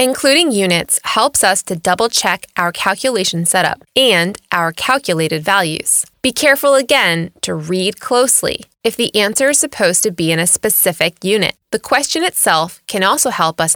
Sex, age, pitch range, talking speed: female, 20-39, 170-245 Hz, 165 wpm